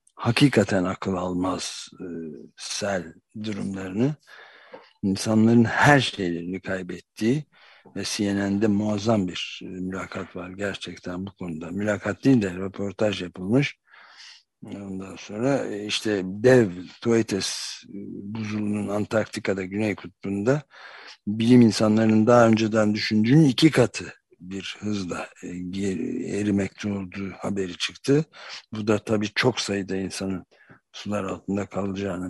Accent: native